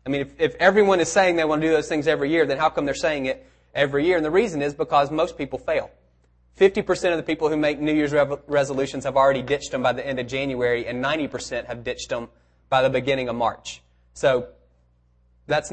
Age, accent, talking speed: 20-39, American, 235 wpm